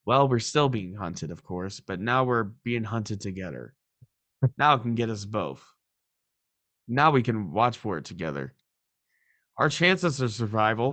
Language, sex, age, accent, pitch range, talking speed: English, male, 20-39, American, 105-135 Hz, 165 wpm